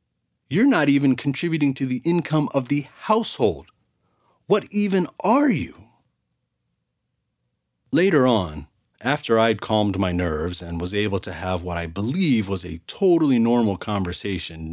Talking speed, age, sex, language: 140 wpm, 30-49, male, English